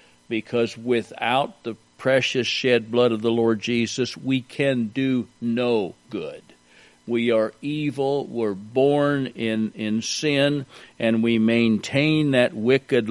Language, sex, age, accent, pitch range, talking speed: English, male, 50-69, American, 105-130 Hz, 130 wpm